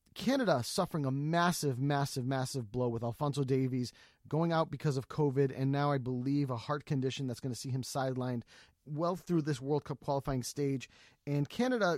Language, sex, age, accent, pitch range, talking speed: English, male, 30-49, American, 135-170 Hz, 185 wpm